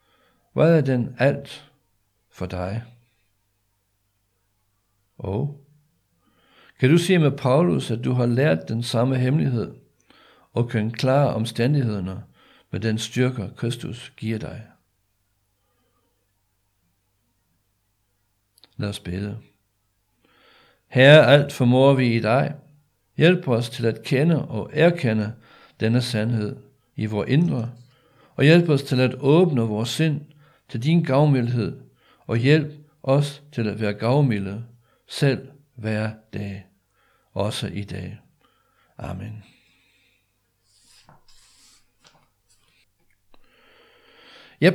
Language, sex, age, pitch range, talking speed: Danish, male, 60-79, 105-140 Hz, 100 wpm